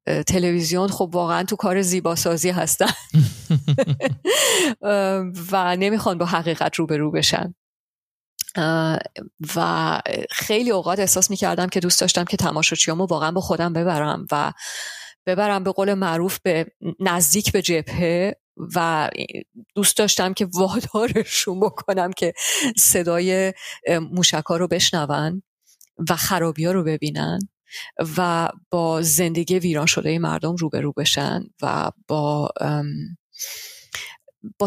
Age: 30-49